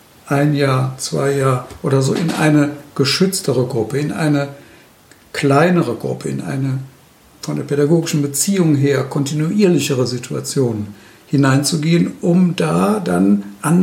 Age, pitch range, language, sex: 60-79, 140-170 Hz, German, male